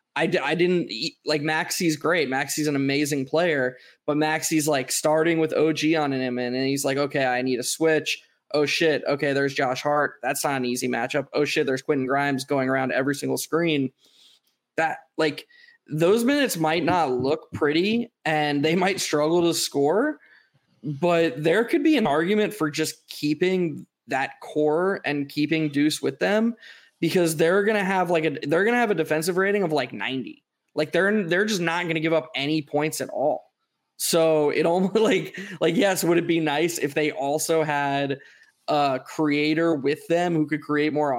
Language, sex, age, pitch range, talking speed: English, male, 20-39, 145-175 Hz, 190 wpm